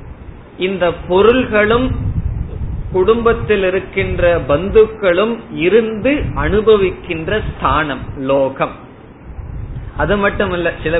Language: Tamil